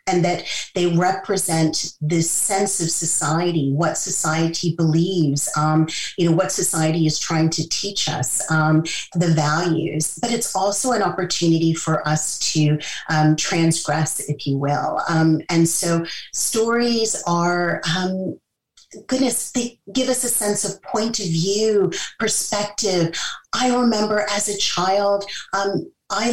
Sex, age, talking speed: female, 30-49, 135 wpm